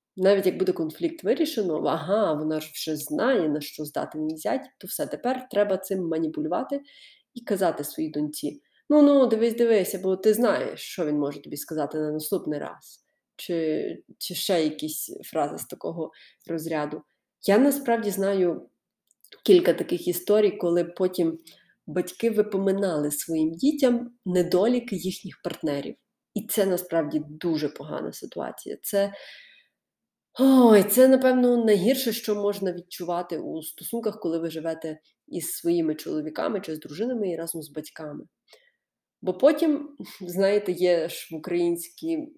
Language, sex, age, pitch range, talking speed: Ukrainian, female, 30-49, 160-215 Hz, 135 wpm